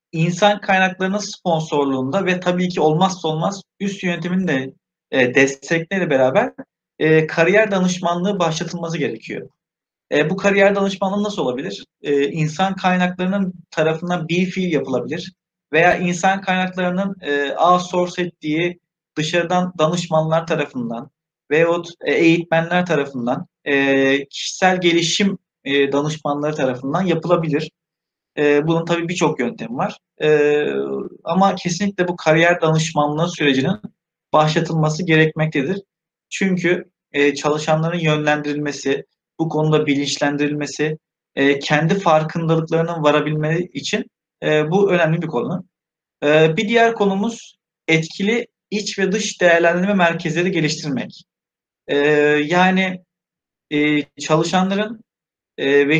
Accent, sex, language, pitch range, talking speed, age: native, male, Turkish, 150-185 Hz, 90 wpm, 40-59